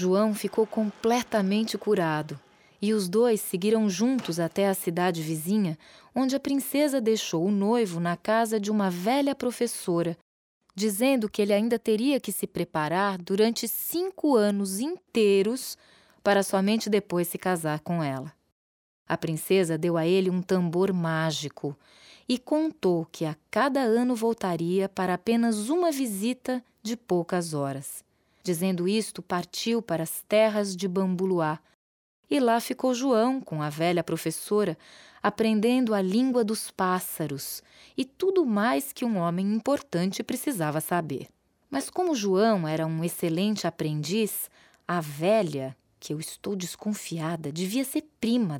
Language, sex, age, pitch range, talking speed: Portuguese, female, 20-39, 170-225 Hz, 140 wpm